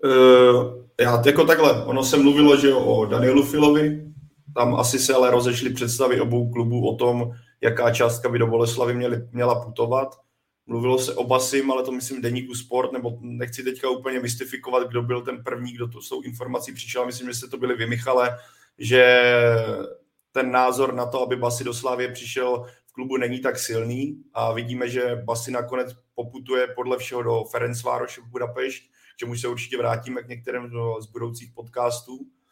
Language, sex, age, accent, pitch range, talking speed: Czech, male, 30-49, native, 120-135 Hz, 175 wpm